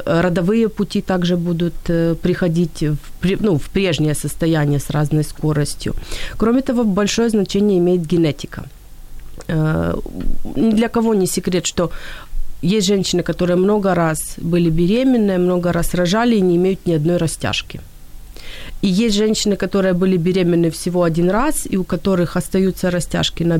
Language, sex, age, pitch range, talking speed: Ukrainian, female, 30-49, 170-215 Hz, 140 wpm